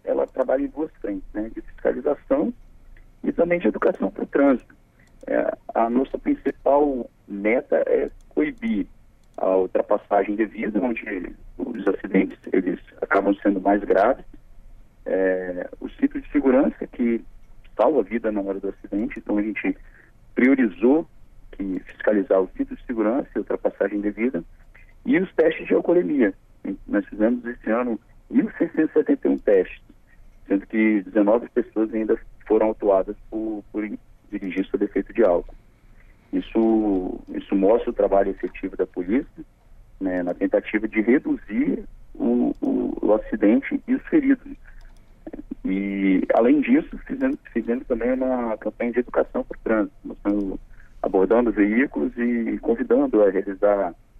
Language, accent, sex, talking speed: Portuguese, Brazilian, male, 140 wpm